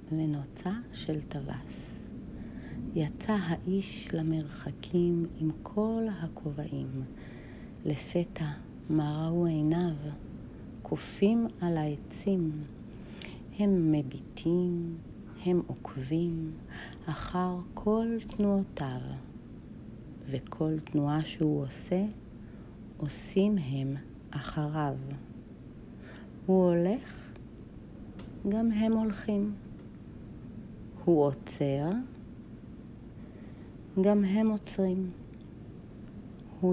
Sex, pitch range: female, 145-195 Hz